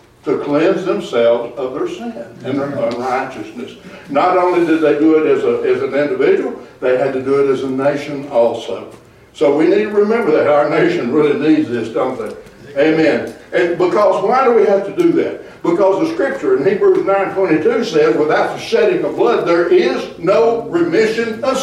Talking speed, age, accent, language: 190 wpm, 60-79, American, English